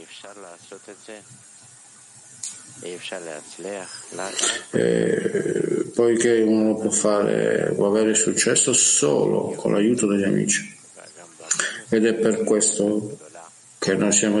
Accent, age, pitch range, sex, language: native, 50-69, 105-120 Hz, male, Italian